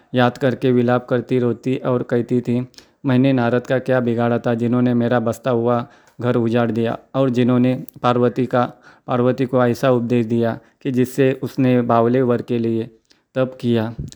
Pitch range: 120-130 Hz